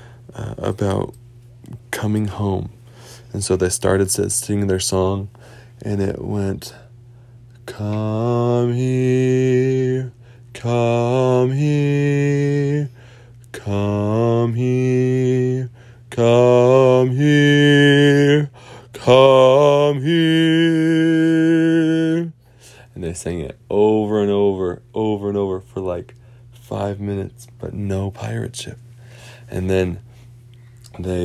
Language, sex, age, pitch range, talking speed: English, male, 20-39, 105-125 Hz, 90 wpm